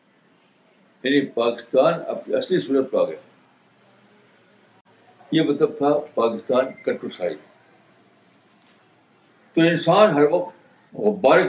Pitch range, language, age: 125-180 Hz, Urdu, 60-79